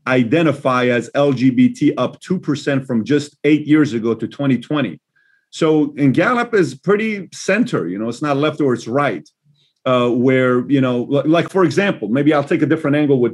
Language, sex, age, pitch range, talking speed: English, male, 40-59, 130-165 Hz, 180 wpm